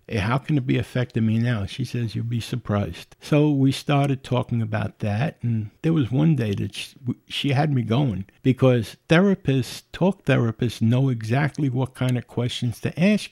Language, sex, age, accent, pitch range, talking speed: English, male, 60-79, American, 115-160 Hz, 180 wpm